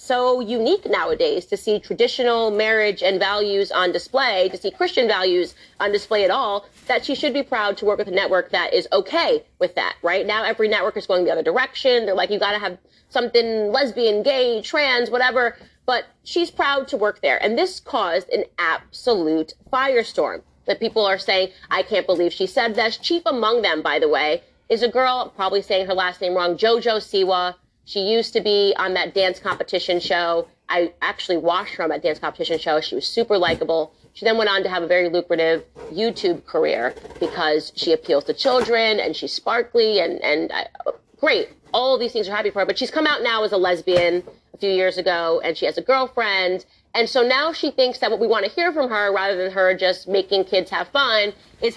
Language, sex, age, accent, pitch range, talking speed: English, female, 30-49, American, 185-250 Hz, 215 wpm